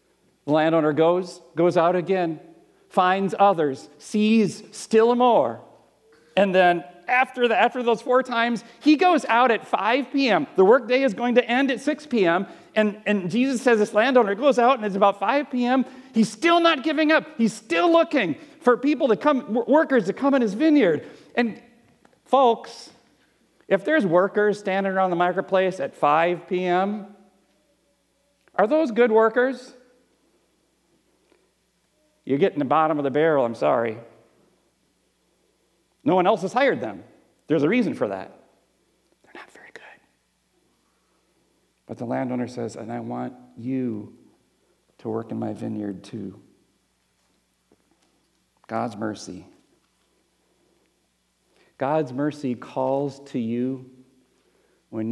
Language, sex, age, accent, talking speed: English, male, 40-59, American, 140 wpm